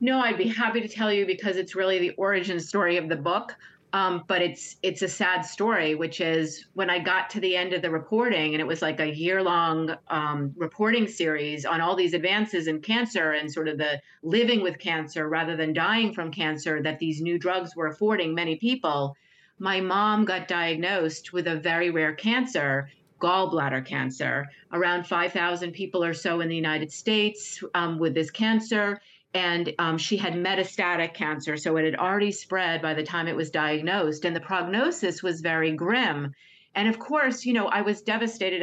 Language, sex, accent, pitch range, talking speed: English, female, American, 165-210 Hz, 195 wpm